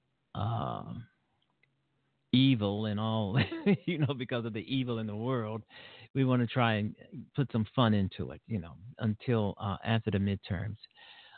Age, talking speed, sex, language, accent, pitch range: 50-69, 160 wpm, male, English, American, 110-140 Hz